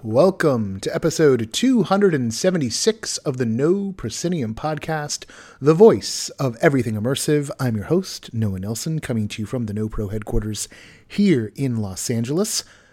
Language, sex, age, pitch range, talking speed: English, male, 30-49, 110-155 Hz, 145 wpm